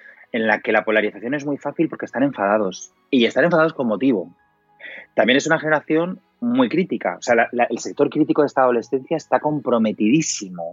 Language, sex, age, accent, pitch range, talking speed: Spanish, male, 30-49, Spanish, 100-150 Hz, 190 wpm